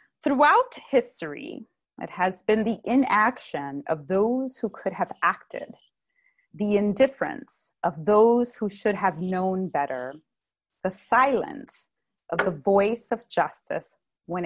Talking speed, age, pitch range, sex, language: 125 wpm, 30-49, 175-240 Hz, female, English